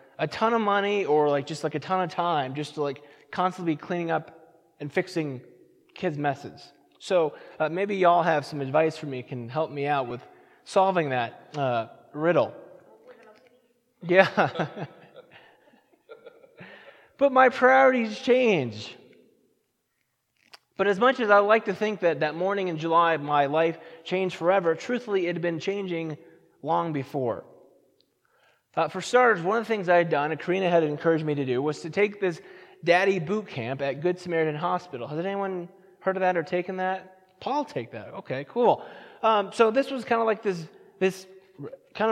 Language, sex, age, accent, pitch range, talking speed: English, male, 20-39, American, 160-195 Hz, 175 wpm